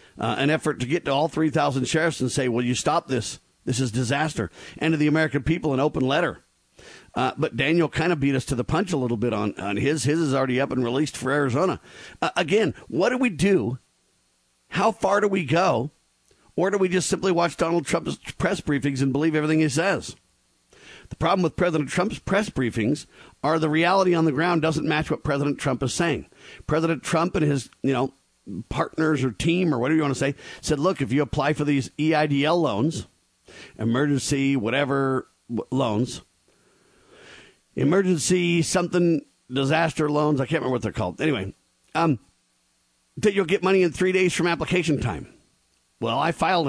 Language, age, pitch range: English, 50-69, 130-165 Hz